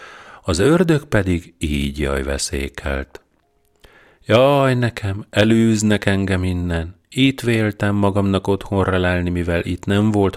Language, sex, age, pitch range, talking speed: Hungarian, male, 40-59, 80-100 Hz, 115 wpm